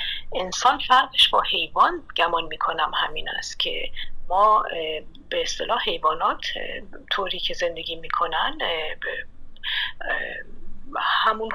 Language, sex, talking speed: Persian, female, 95 wpm